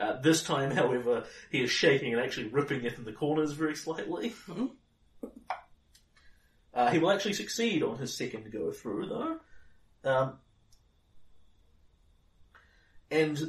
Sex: male